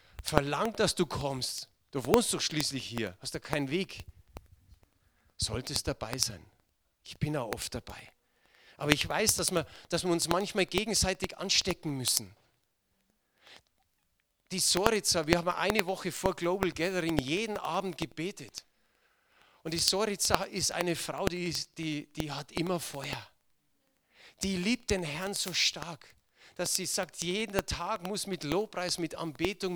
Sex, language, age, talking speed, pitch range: male, German, 40-59, 145 wpm, 140-180 Hz